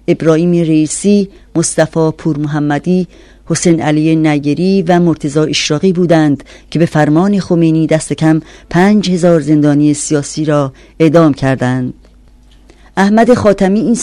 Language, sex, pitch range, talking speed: Persian, female, 155-185 Hz, 115 wpm